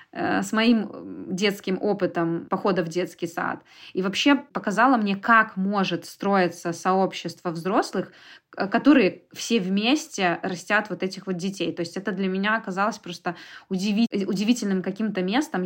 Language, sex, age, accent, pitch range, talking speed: Russian, female, 20-39, native, 180-220 Hz, 135 wpm